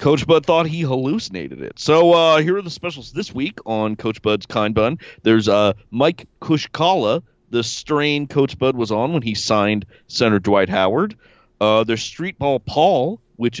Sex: male